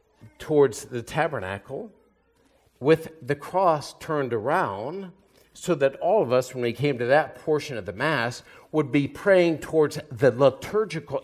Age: 50-69